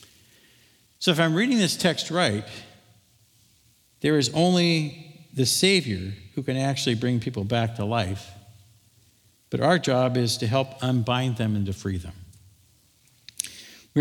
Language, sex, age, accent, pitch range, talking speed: English, male, 50-69, American, 105-140 Hz, 140 wpm